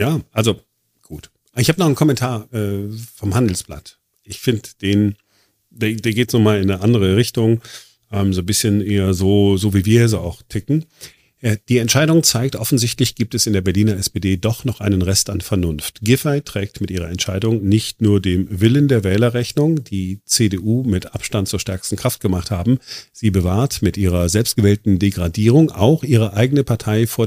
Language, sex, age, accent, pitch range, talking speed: German, male, 40-59, German, 95-115 Hz, 180 wpm